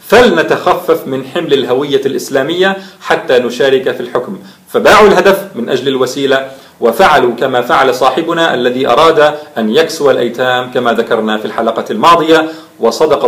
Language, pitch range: Arabic, 125-175 Hz